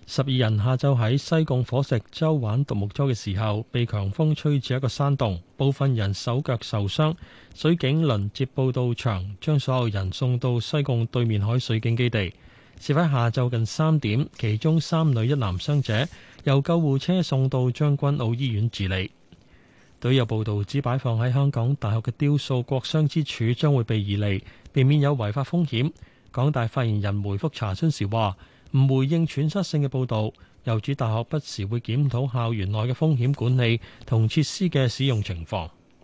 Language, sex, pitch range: Chinese, male, 110-140 Hz